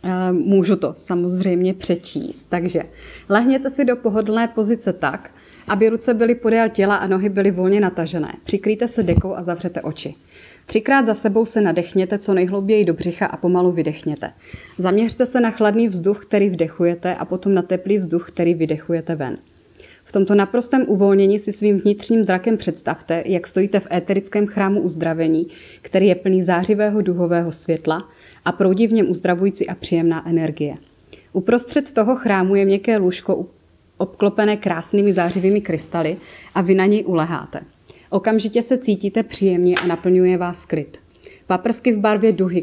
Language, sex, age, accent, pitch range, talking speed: Czech, female, 30-49, native, 175-210 Hz, 155 wpm